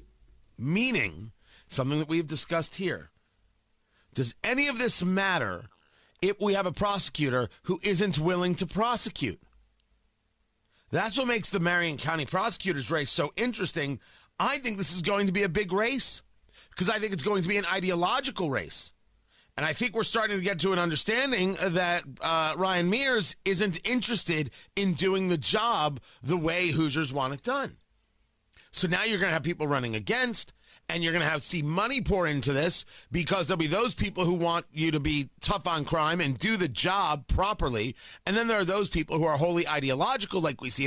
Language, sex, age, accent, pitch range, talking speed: English, male, 40-59, American, 135-195 Hz, 185 wpm